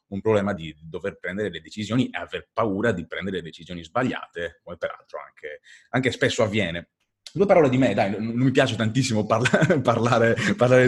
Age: 30-49